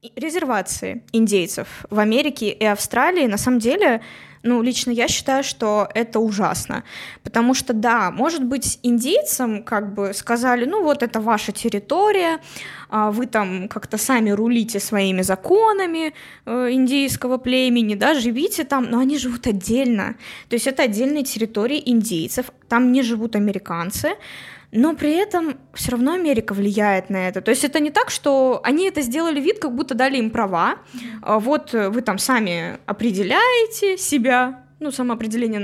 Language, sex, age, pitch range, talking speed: Russian, female, 20-39, 215-270 Hz, 150 wpm